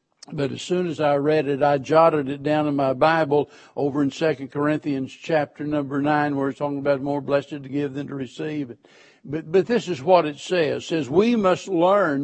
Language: English